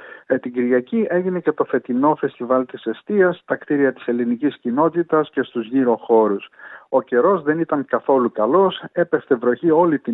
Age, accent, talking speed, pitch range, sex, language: 50-69, native, 165 wpm, 120-160 Hz, male, Greek